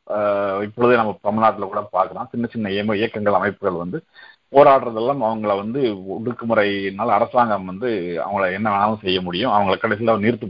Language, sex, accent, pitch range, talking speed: Tamil, male, native, 100-125 Hz, 145 wpm